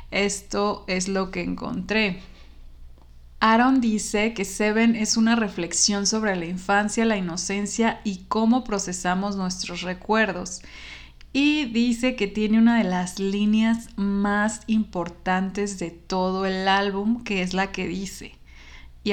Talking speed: 130 wpm